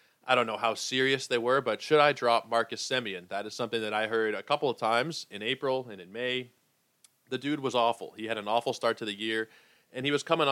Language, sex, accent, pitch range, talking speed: English, male, American, 105-130 Hz, 250 wpm